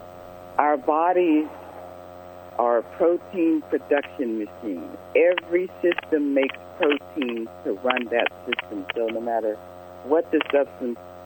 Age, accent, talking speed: 50-69, American, 110 wpm